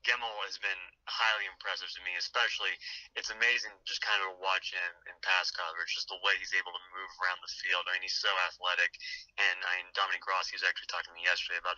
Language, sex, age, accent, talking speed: English, male, 20-39, American, 240 wpm